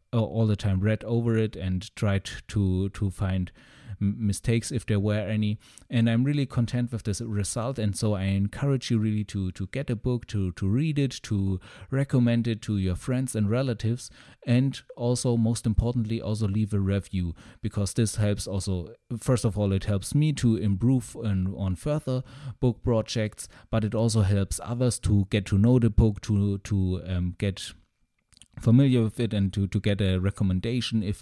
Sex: male